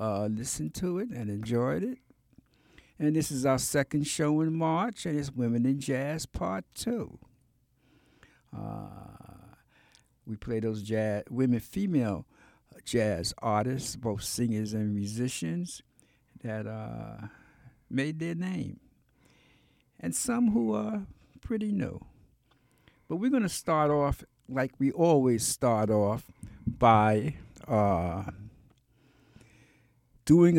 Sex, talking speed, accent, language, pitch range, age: male, 120 wpm, American, English, 110-155 Hz, 60-79